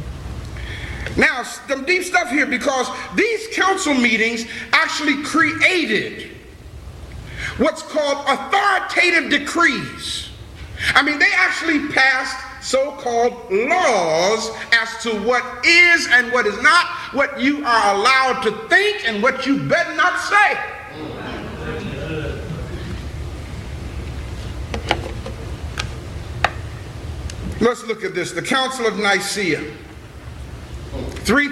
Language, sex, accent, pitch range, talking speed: English, male, American, 220-305 Hz, 95 wpm